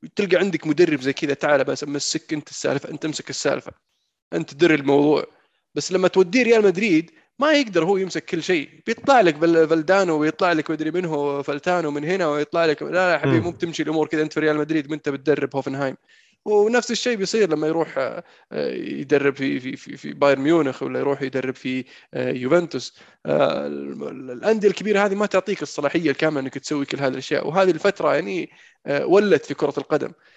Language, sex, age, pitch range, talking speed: Arabic, male, 20-39, 145-180 Hz, 175 wpm